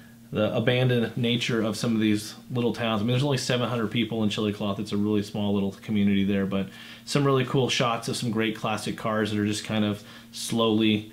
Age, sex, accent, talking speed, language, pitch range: 30-49, male, American, 220 wpm, English, 110-125 Hz